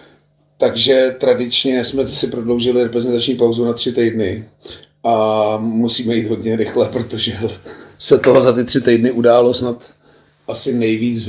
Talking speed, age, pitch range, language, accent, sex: 145 wpm, 30-49, 110-120 Hz, Czech, native, male